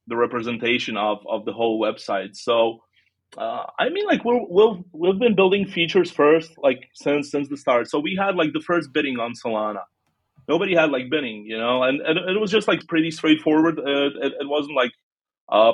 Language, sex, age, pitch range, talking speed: English, male, 30-49, 125-175 Hz, 200 wpm